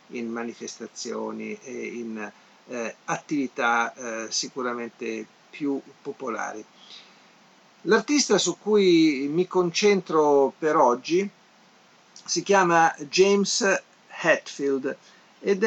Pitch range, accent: 125-165 Hz, native